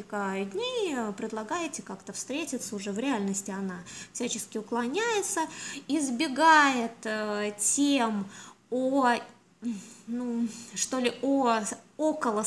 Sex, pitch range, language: female, 210-285 Hz, Russian